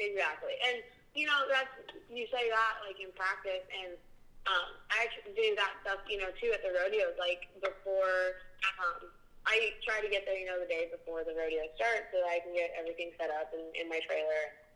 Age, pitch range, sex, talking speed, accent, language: 20-39, 175-235 Hz, female, 210 wpm, American, English